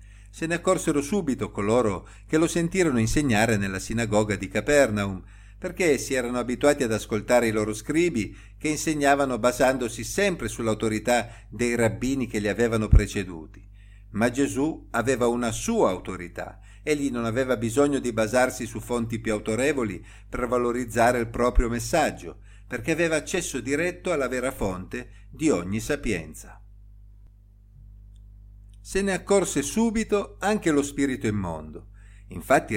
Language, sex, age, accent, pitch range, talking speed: Italian, male, 50-69, native, 105-140 Hz, 135 wpm